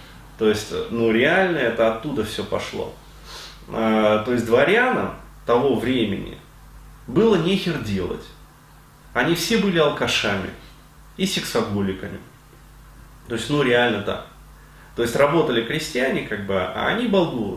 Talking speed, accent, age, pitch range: 125 wpm, native, 20-39, 105-155 Hz